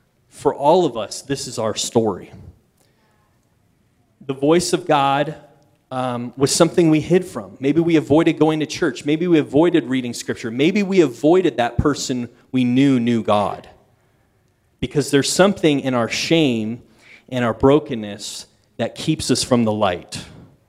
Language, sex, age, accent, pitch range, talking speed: English, male, 30-49, American, 120-155 Hz, 155 wpm